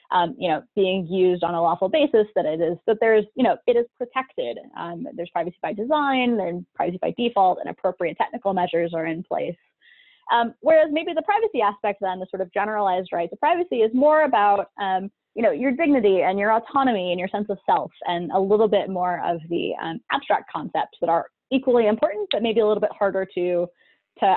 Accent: American